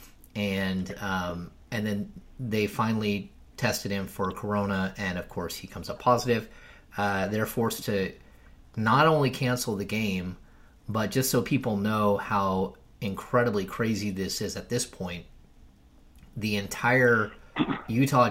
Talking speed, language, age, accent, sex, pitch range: 140 wpm, English, 30-49, American, male, 95-115 Hz